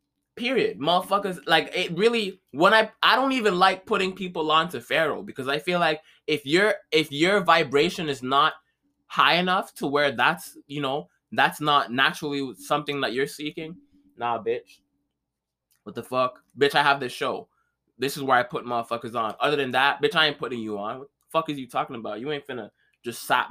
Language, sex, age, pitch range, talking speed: English, male, 20-39, 130-195 Hz, 200 wpm